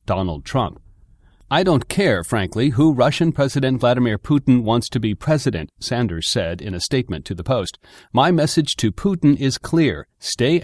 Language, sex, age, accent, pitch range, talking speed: English, male, 40-59, American, 105-150 Hz, 170 wpm